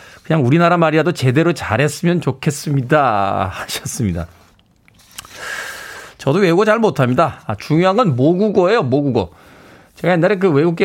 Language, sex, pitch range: Korean, male, 130-195 Hz